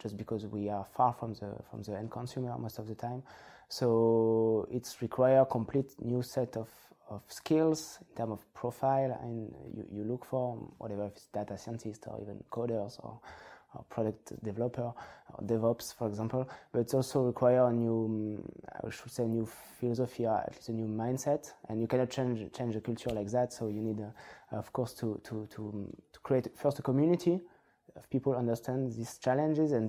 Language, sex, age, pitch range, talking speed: English, male, 20-39, 110-130 Hz, 195 wpm